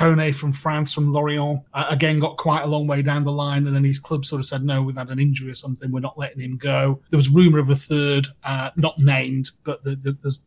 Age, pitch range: 30-49, 140-165 Hz